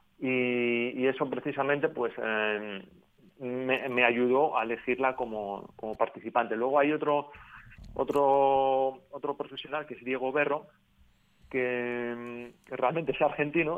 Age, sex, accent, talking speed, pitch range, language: 30-49, male, Spanish, 125 wpm, 120-145 Hz, Spanish